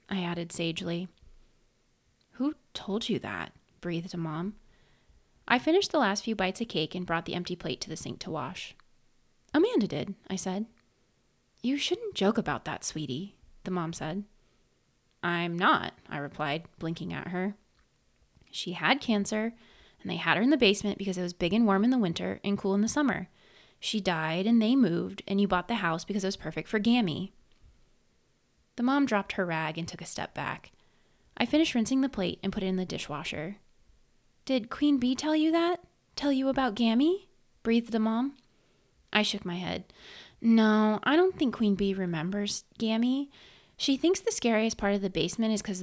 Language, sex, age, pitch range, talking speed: English, female, 20-39, 175-235 Hz, 190 wpm